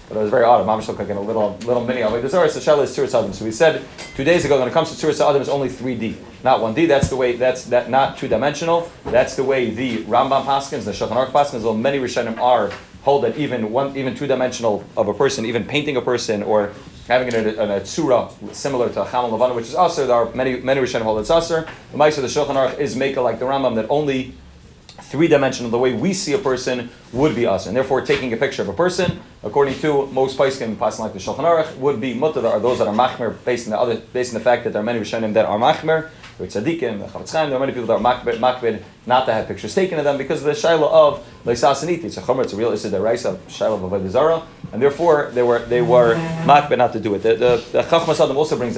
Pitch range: 115-145 Hz